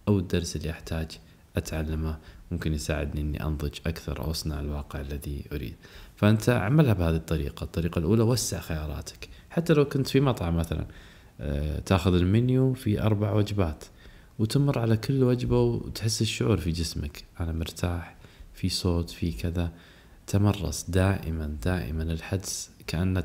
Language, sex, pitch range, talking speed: Arabic, male, 80-105 Hz, 140 wpm